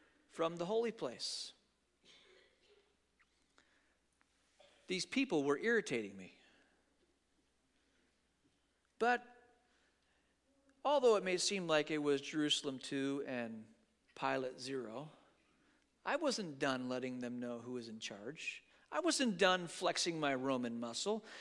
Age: 50-69